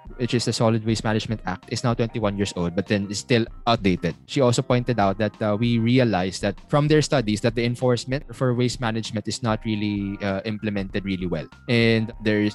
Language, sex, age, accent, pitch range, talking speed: English, male, 20-39, Filipino, 105-125 Hz, 210 wpm